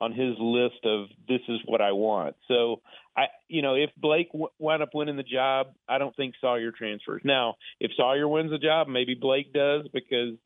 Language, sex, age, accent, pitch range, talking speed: English, male, 40-59, American, 115-135 Hz, 205 wpm